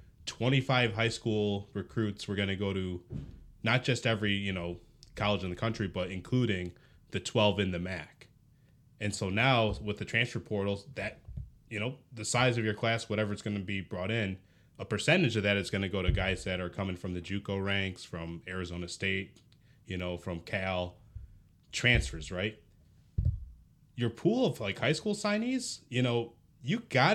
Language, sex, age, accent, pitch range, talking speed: English, male, 20-39, American, 95-125 Hz, 185 wpm